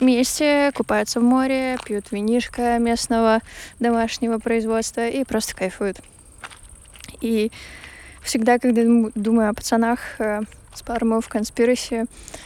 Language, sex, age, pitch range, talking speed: Russian, female, 20-39, 200-230 Hz, 100 wpm